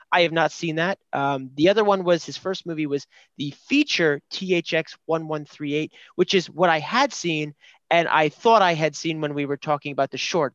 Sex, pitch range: male, 155-200 Hz